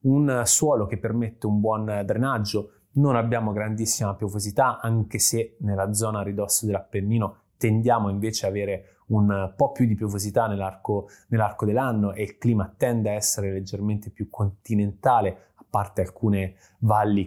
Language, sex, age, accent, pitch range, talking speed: Italian, male, 20-39, native, 100-120 Hz, 145 wpm